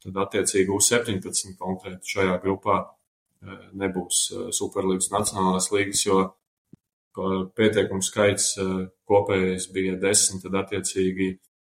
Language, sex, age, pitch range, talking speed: English, male, 20-39, 95-100 Hz, 90 wpm